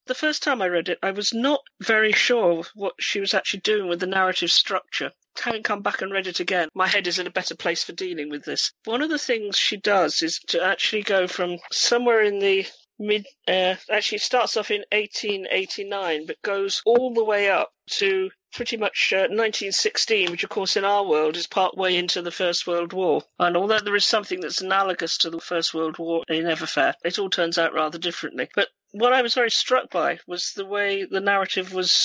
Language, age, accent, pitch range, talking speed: English, 40-59, British, 180-220 Hz, 220 wpm